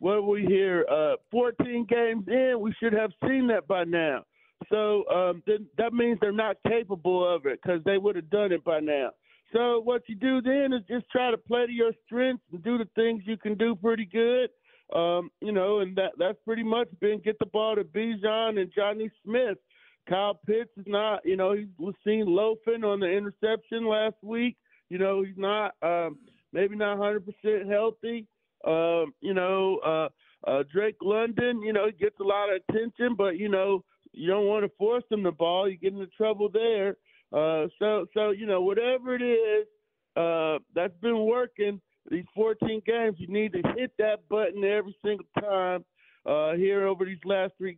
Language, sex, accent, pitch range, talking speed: English, male, American, 190-225 Hz, 195 wpm